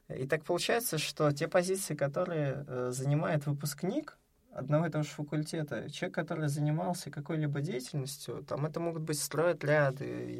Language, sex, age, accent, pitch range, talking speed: Russian, male, 20-39, native, 130-155 Hz, 145 wpm